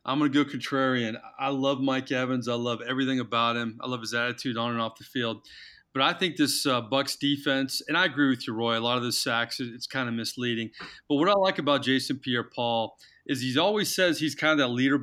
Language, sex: English, male